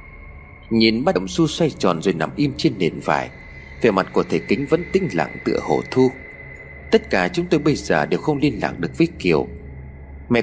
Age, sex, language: 30-49, male, Vietnamese